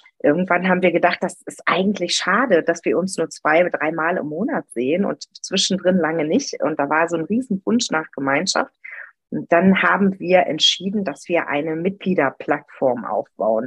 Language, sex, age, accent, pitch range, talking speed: German, female, 30-49, German, 175-230 Hz, 180 wpm